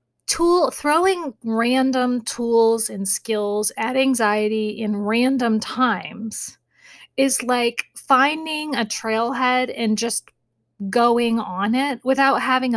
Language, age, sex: English, 30-49, female